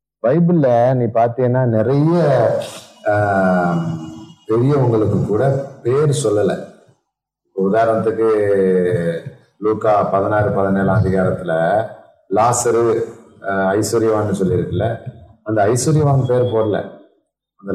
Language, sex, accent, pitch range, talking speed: Tamil, male, native, 95-125 Hz, 70 wpm